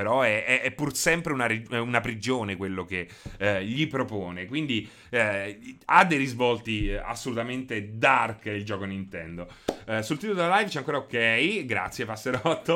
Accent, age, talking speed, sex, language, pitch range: native, 30-49, 160 wpm, male, Italian, 105-175 Hz